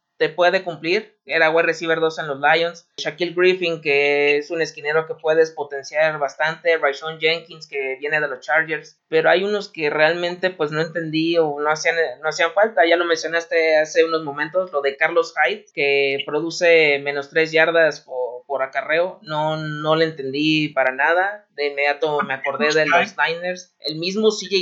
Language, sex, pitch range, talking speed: Spanish, male, 155-180 Hz, 185 wpm